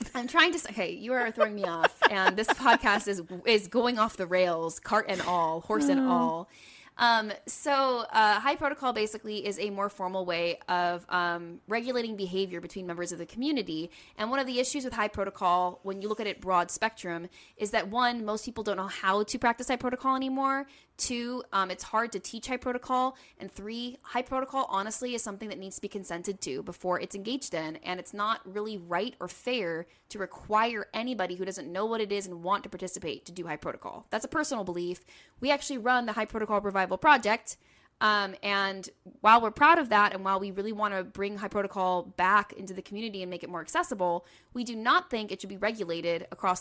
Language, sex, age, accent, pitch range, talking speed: English, female, 10-29, American, 185-240 Hz, 220 wpm